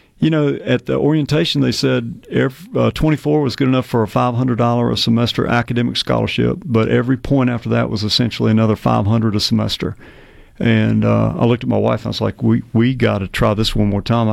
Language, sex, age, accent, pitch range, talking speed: English, male, 50-69, American, 110-130 Hz, 205 wpm